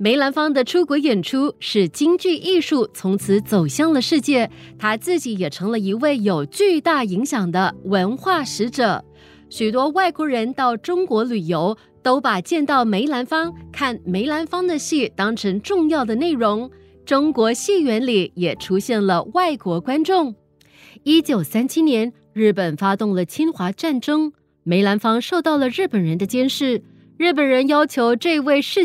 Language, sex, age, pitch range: Chinese, female, 20-39, 195-300 Hz